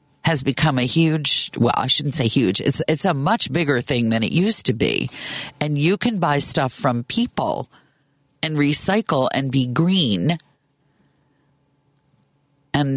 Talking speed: 155 wpm